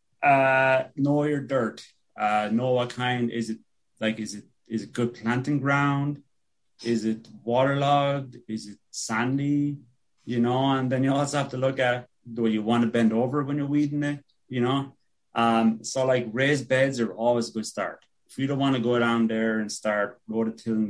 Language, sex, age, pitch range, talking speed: English, male, 30-49, 110-135 Hz, 190 wpm